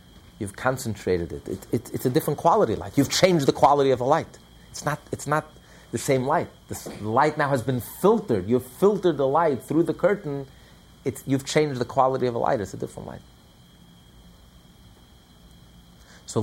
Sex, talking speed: male, 185 wpm